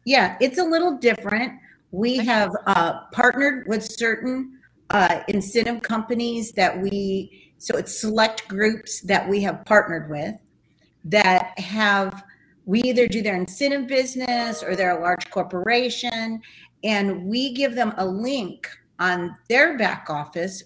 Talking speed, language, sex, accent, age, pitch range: 140 wpm, English, female, American, 50-69, 185-230 Hz